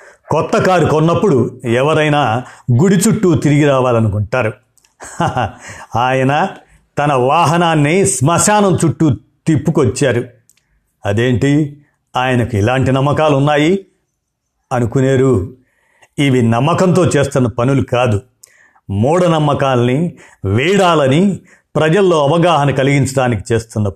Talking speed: 80 wpm